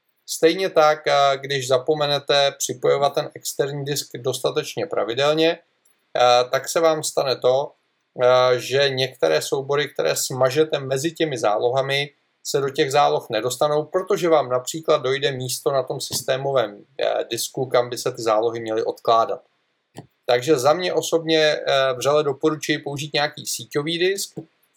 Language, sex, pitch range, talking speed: Czech, male, 130-160 Hz, 130 wpm